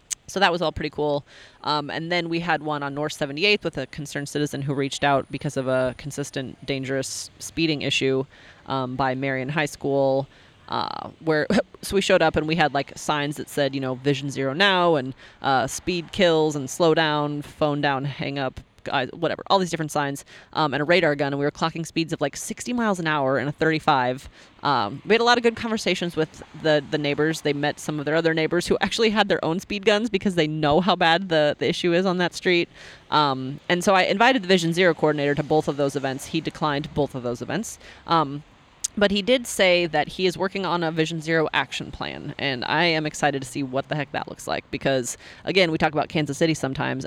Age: 30-49